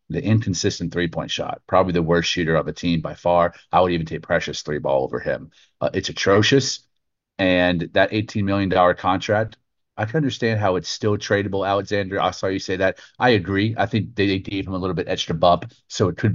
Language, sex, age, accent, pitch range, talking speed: English, male, 40-59, American, 85-110 Hz, 215 wpm